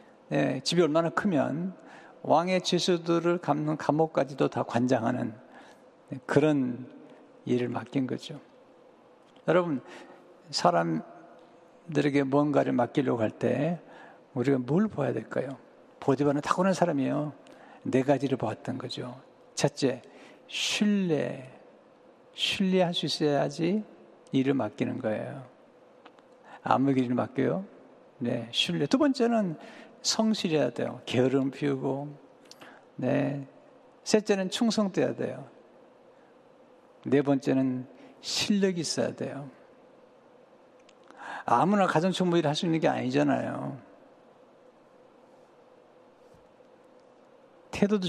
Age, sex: 60-79, male